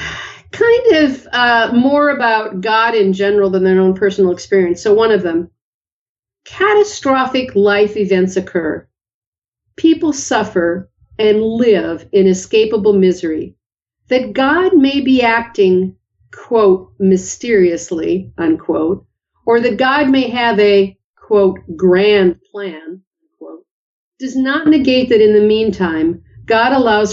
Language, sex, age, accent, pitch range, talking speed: English, female, 50-69, American, 190-265 Hz, 120 wpm